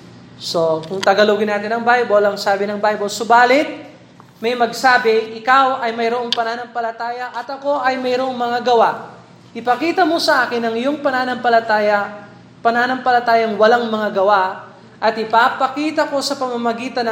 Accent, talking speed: native, 135 wpm